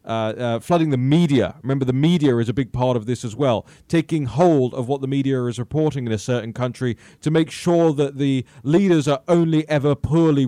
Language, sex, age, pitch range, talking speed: English, male, 30-49, 125-165 Hz, 220 wpm